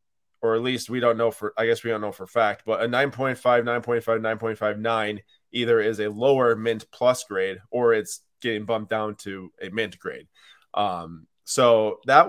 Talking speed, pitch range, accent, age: 175 wpm, 110-135 Hz, American, 20-39